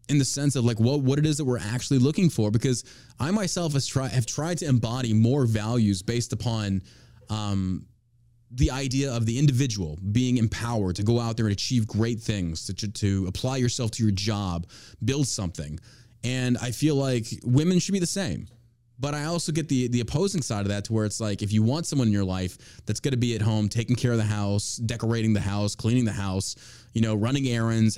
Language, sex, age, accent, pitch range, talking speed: English, male, 20-39, American, 105-130 Hz, 215 wpm